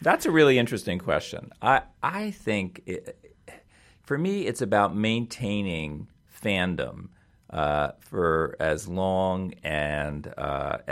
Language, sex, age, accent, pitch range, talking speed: English, male, 50-69, American, 75-100 Hz, 115 wpm